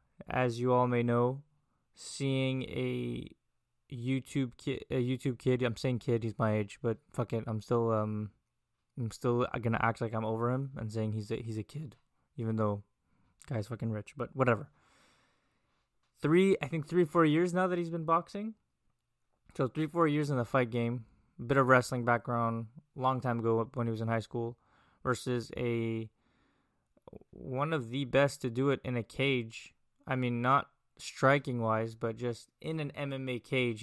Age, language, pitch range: 20-39, English, 115-135 Hz